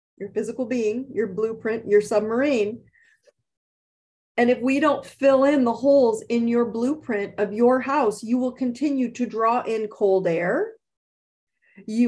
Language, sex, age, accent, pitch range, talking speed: English, female, 40-59, American, 205-265 Hz, 150 wpm